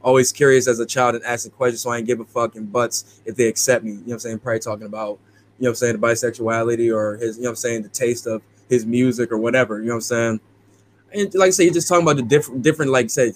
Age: 10-29